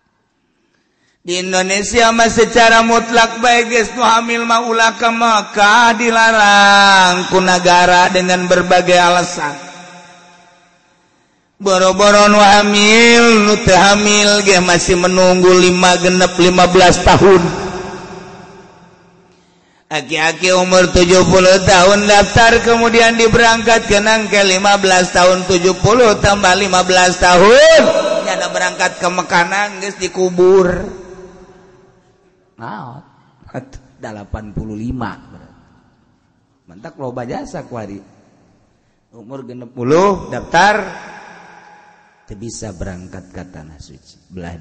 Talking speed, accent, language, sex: 75 wpm, native, Indonesian, male